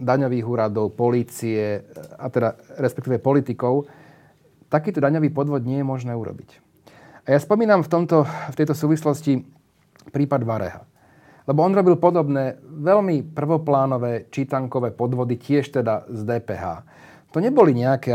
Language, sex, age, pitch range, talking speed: Slovak, male, 40-59, 115-150 Hz, 130 wpm